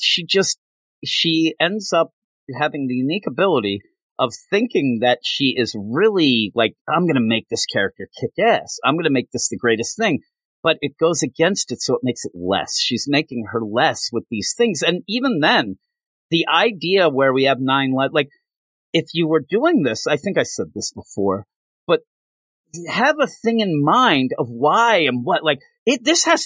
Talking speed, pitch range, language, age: 190 wpm, 135-205 Hz, English, 40-59